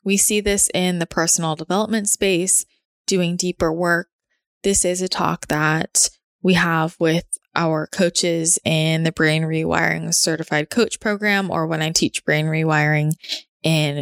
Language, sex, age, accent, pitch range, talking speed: English, female, 20-39, American, 165-195 Hz, 150 wpm